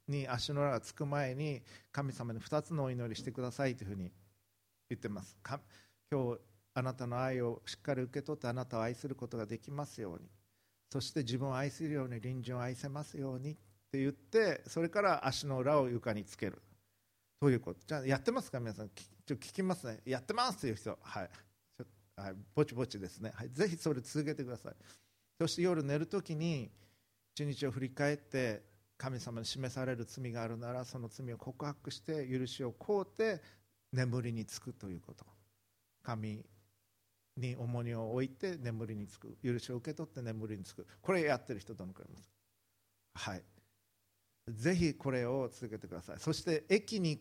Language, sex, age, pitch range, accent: Japanese, male, 50-69, 105-140 Hz, native